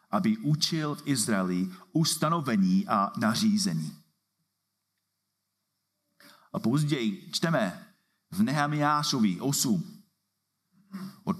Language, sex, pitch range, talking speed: Czech, male, 145-185 Hz, 75 wpm